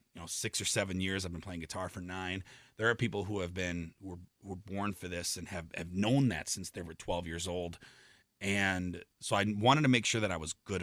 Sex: male